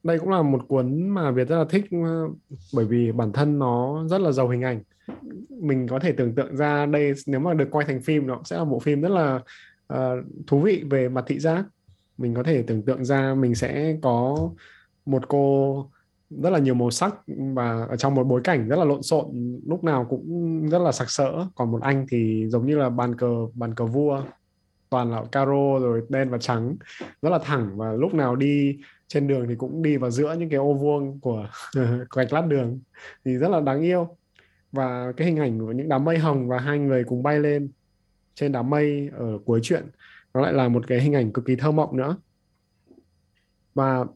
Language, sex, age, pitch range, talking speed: Vietnamese, male, 20-39, 125-155 Hz, 220 wpm